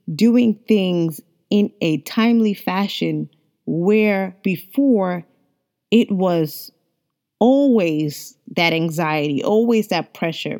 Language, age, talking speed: English, 20-39, 90 wpm